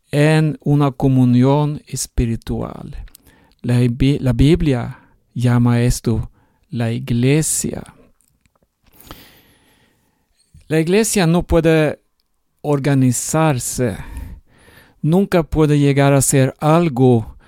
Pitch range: 125-155 Hz